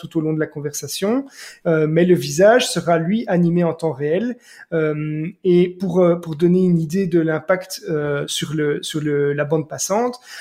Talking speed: 195 wpm